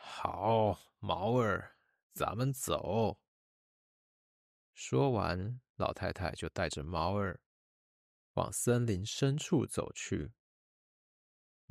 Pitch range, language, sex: 85-125 Hz, Chinese, male